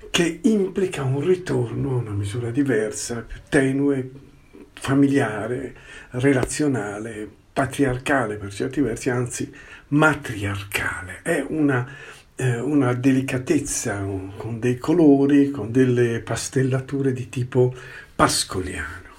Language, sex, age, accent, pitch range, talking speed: Italian, male, 50-69, native, 105-135 Hz, 105 wpm